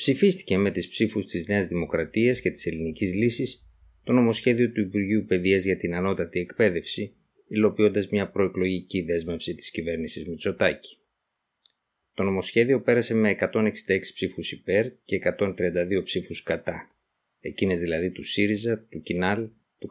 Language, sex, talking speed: Greek, male, 135 wpm